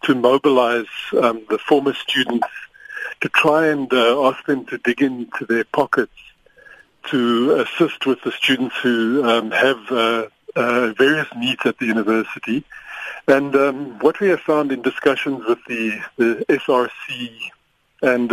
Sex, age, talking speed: male, 50-69, 145 wpm